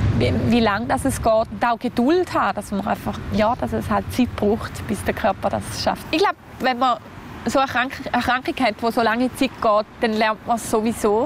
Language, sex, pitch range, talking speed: German, female, 215-265 Hz, 225 wpm